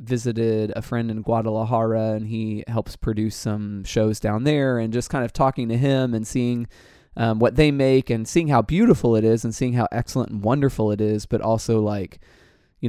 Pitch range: 110-125 Hz